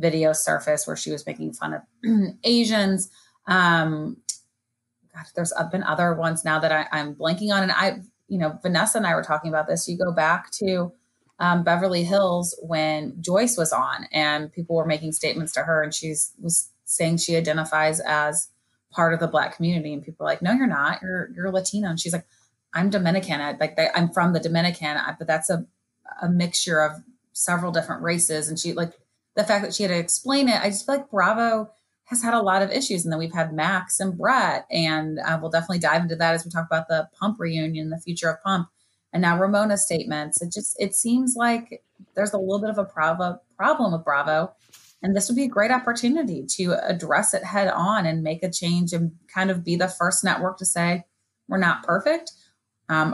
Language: English